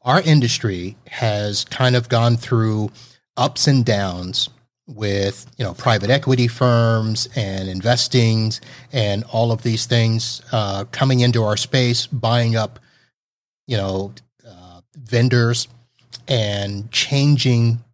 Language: English